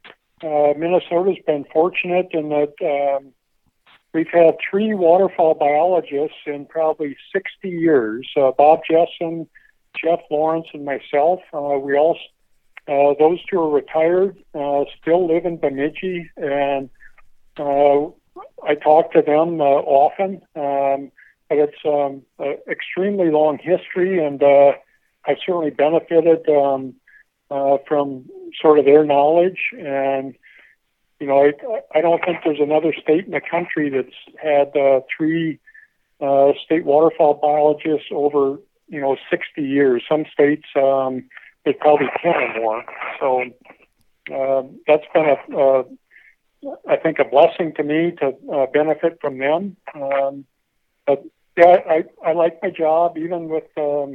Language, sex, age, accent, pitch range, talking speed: English, male, 60-79, American, 140-170 Hz, 140 wpm